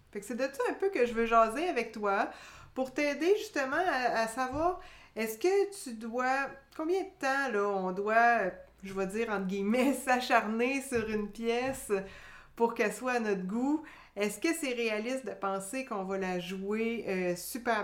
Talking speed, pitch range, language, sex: 190 wpm, 200-265 Hz, French, female